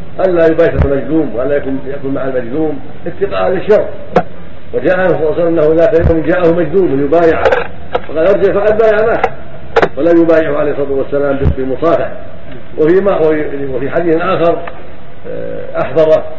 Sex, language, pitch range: male, Arabic, 145-175 Hz